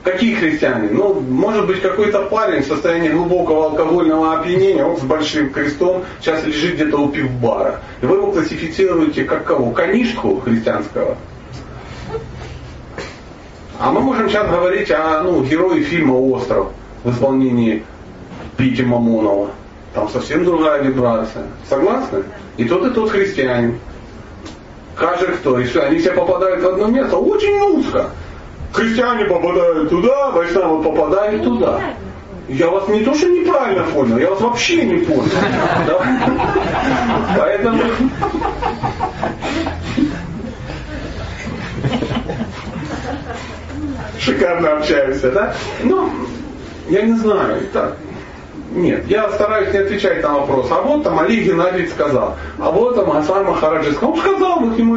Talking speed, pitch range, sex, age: 125 wpm, 135-215 Hz, male, 40-59